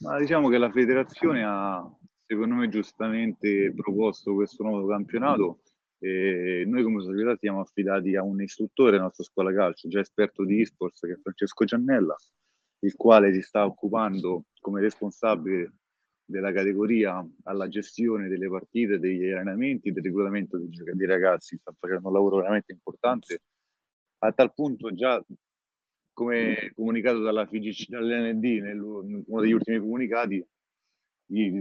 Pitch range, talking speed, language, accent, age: 95-110 Hz, 140 wpm, Italian, native, 30-49